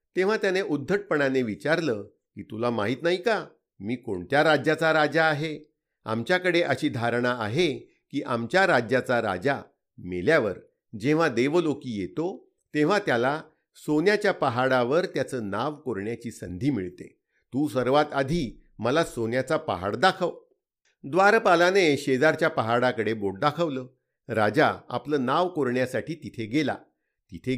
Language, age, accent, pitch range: Marathi, 50-69, native, 125-175 Hz